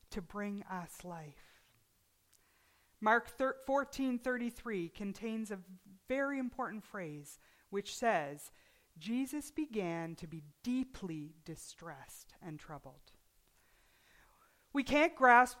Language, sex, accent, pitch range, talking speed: English, female, American, 180-275 Hz, 90 wpm